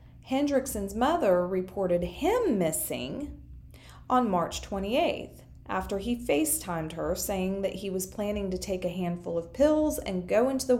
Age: 30-49